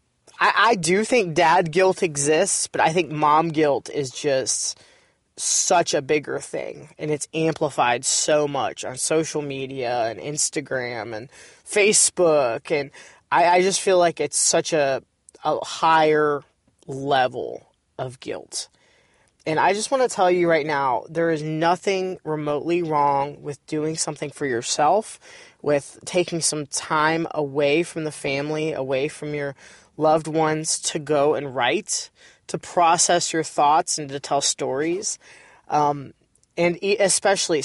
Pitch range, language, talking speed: 140-170 Hz, English, 145 wpm